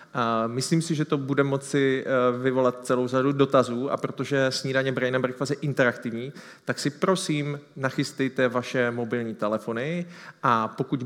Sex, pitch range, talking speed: male, 120-140 Hz, 135 wpm